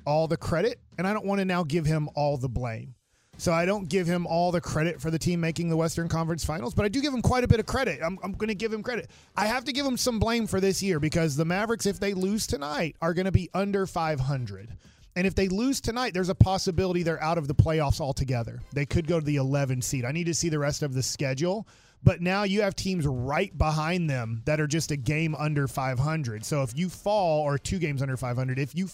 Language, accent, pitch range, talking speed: English, American, 135-185 Hz, 260 wpm